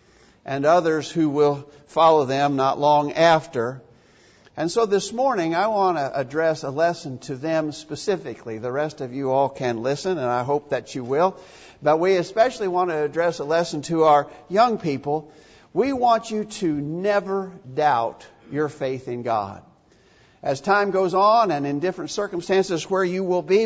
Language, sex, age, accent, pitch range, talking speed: English, male, 50-69, American, 145-200 Hz, 175 wpm